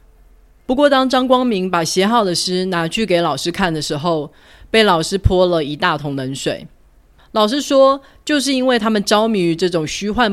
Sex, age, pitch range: female, 30-49, 145-205 Hz